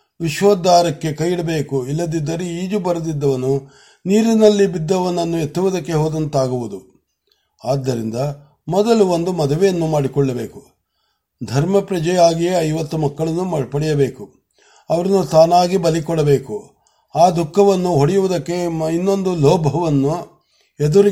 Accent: native